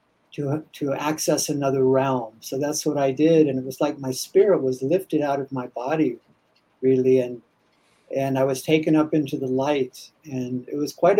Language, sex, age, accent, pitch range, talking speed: English, male, 60-79, American, 130-155 Hz, 195 wpm